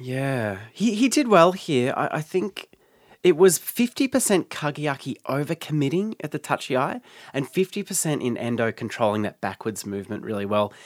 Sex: male